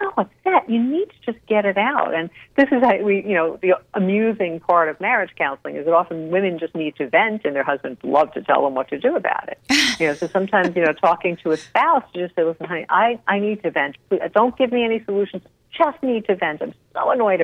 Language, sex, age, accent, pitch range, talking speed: English, female, 60-79, American, 165-235 Hz, 255 wpm